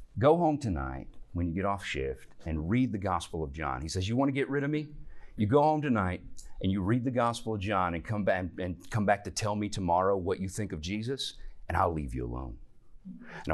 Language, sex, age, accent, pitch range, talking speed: English, male, 40-59, American, 80-120 Hz, 245 wpm